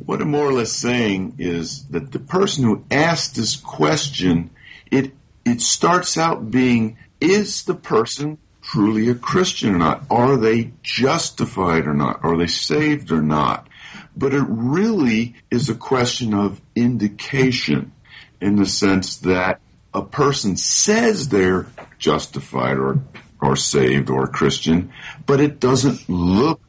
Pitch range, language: 95-140 Hz, English